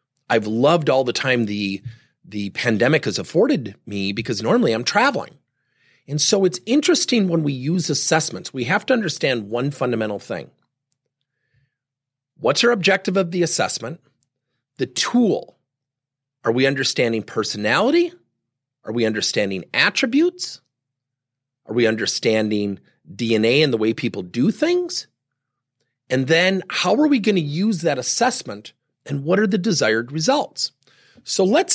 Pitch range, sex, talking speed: 125-180 Hz, male, 140 wpm